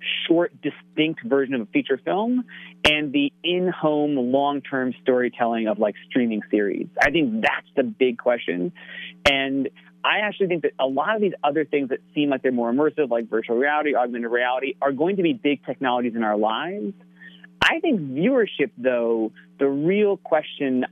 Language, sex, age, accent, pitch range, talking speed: English, male, 40-59, American, 125-170 Hz, 170 wpm